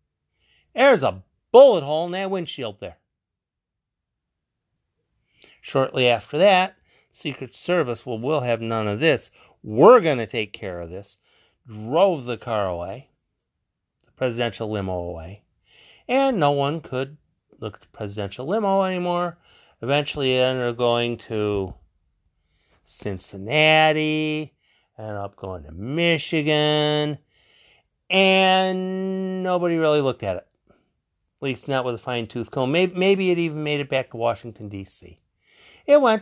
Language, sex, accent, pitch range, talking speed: English, male, American, 105-155 Hz, 135 wpm